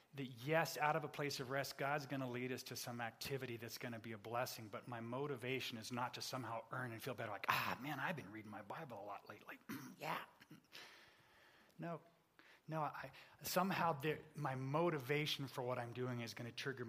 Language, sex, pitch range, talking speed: English, male, 140-230 Hz, 195 wpm